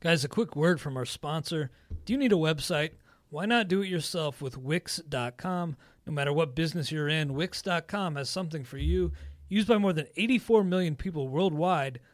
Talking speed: 190 wpm